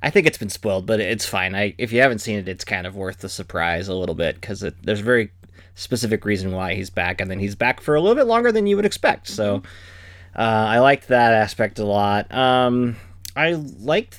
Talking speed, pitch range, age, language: 235 wpm, 95-130 Hz, 30-49, English